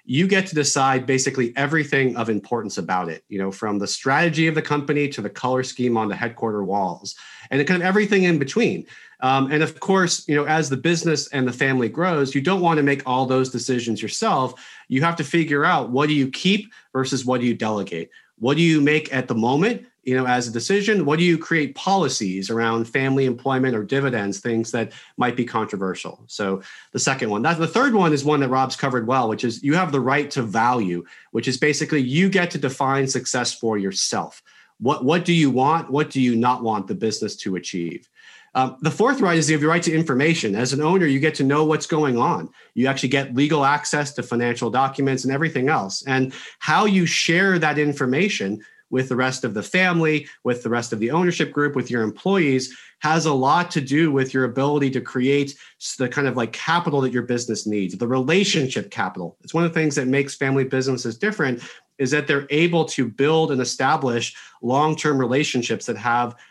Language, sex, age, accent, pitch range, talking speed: English, male, 40-59, American, 125-155 Hz, 215 wpm